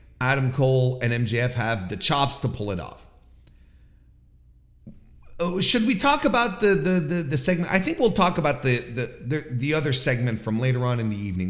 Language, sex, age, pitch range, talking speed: English, male, 30-49, 100-150 Hz, 195 wpm